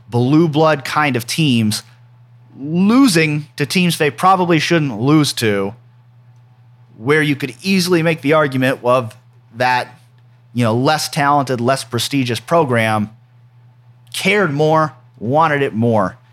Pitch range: 120-160 Hz